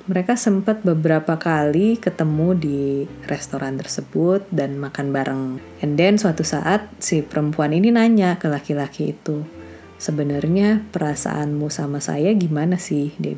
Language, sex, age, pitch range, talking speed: Indonesian, female, 30-49, 145-180 Hz, 125 wpm